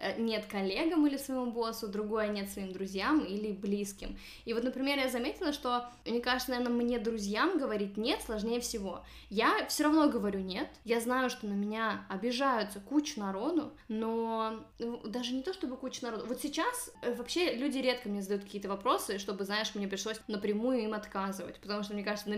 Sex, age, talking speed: female, 10-29, 180 wpm